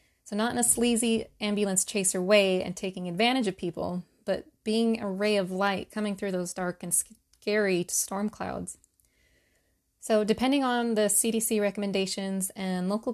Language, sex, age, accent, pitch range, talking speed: English, female, 20-39, American, 190-225 Hz, 160 wpm